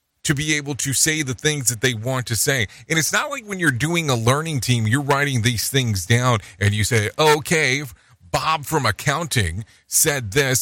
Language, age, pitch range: English, 40-59, 95-150 Hz